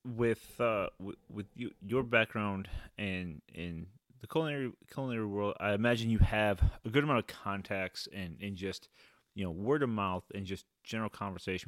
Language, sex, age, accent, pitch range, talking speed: English, male, 30-49, American, 90-110 Hz, 175 wpm